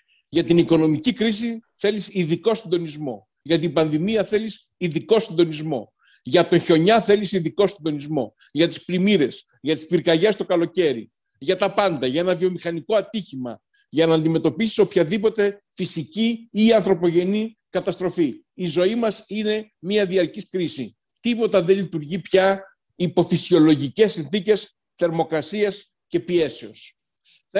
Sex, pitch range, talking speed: male, 165-220 Hz, 130 wpm